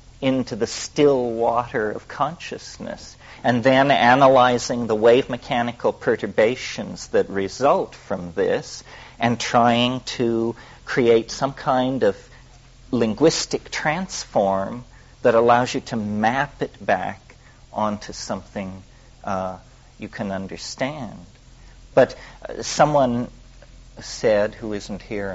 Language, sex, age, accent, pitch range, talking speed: English, male, 50-69, American, 105-125 Hz, 105 wpm